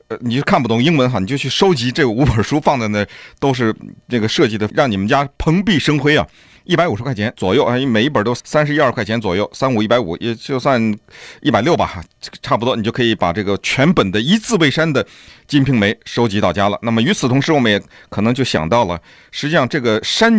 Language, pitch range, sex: Chinese, 115-175 Hz, male